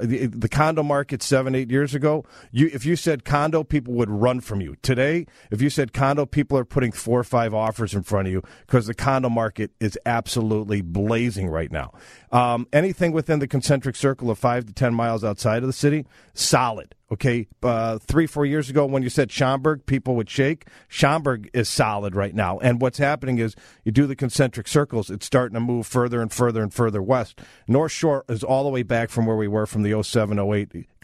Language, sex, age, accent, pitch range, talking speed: English, male, 40-59, American, 115-145 Hz, 210 wpm